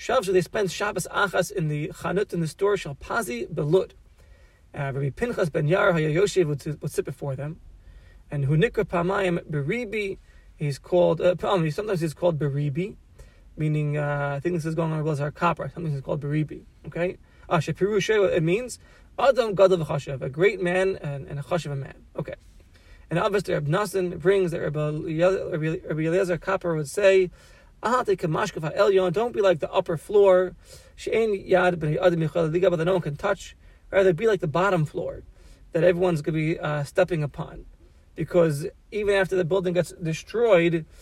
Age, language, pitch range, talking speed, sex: 30-49, English, 150-190 Hz, 160 wpm, male